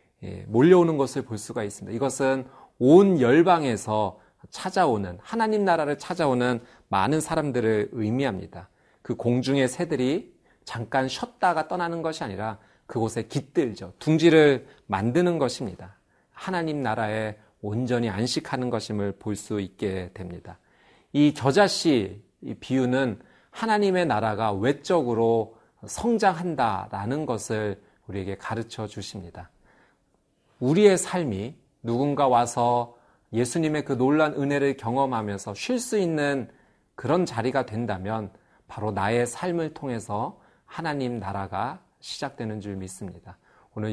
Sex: male